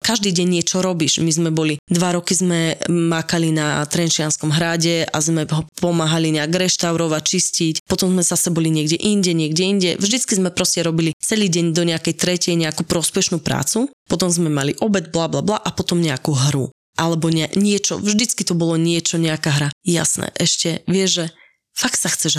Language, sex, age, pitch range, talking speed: Slovak, female, 20-39, 165-195 Hz, 180 wpm